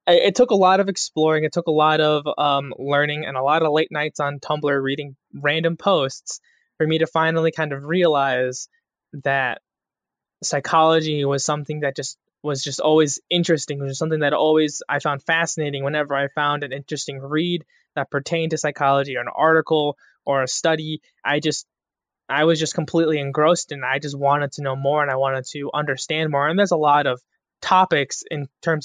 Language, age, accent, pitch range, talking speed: English, 20-39, American, 140-160 Hz, 195 wpm